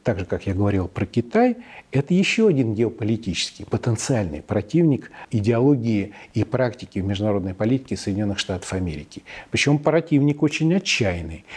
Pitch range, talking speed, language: 110-170 Hz, 135 wpm, Russian